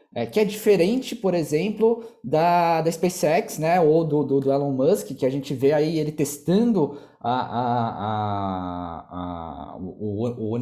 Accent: Brazilian